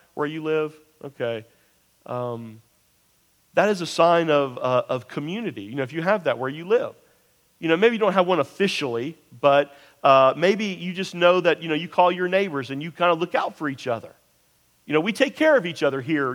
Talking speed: 225 wpm